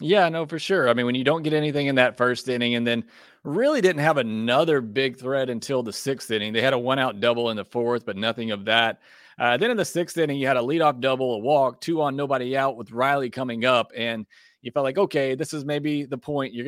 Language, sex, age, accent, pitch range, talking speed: English, male, 30-49, American, 120-135 Hz, 255 wpm